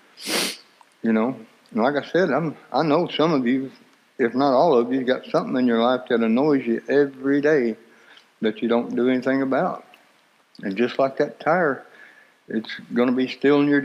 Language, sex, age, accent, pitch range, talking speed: English, male, 60-79, American, 120-140 Hz, 185 wpm